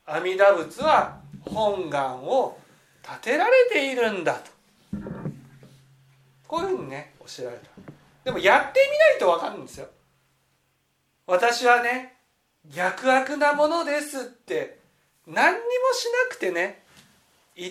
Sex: male